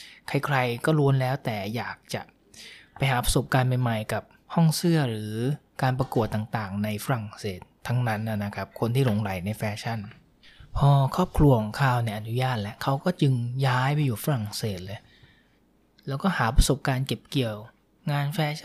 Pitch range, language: 115-145 Hz, Thai